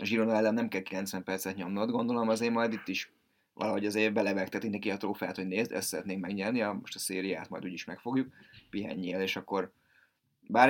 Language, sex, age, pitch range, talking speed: Hungarian, male, 20-39, 95-110 Hz, 200 wpm